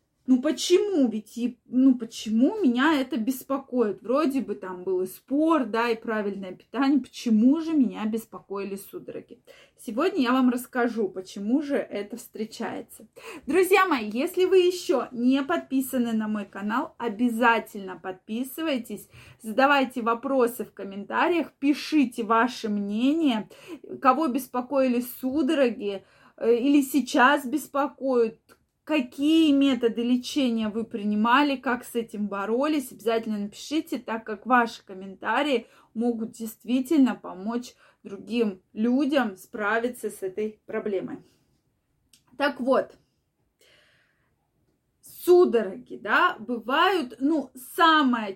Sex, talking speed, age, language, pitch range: female, 110 wpm, 20-39, Russian, 220-285 Hz